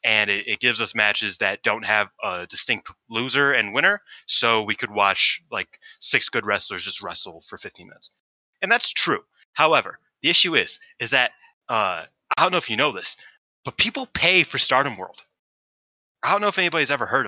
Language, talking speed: English, 200 wpm